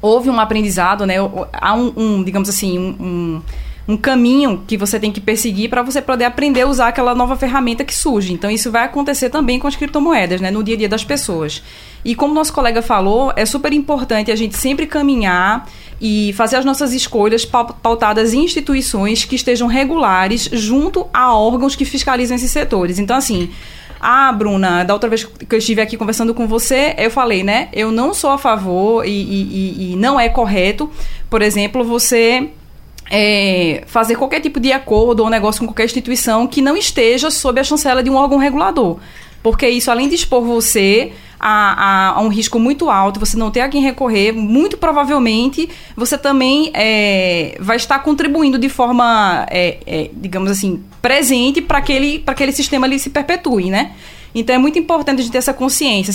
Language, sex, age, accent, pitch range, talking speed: Portuguese, female, 20-39, Brazilian, 215-270 Hz, 185 wpm